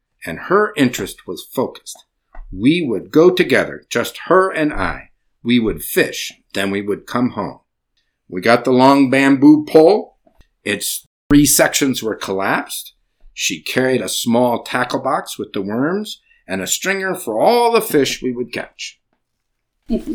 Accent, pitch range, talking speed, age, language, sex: American, 115-175 Hz, 150 wpm, 50-69, English, male